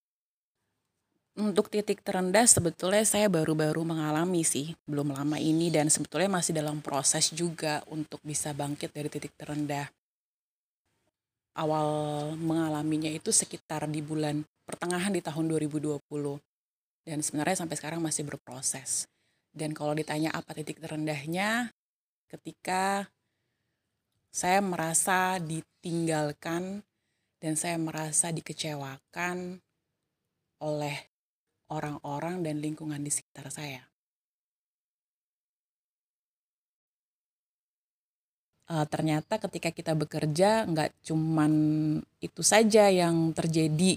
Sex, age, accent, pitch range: female, 20-39, Indonesian, 150-175 Hz